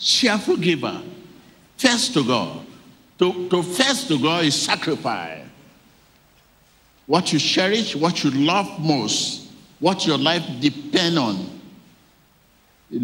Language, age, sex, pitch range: English, 50-69, male, 125-170 Hz